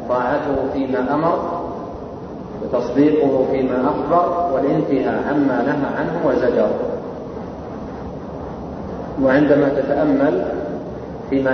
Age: 30-49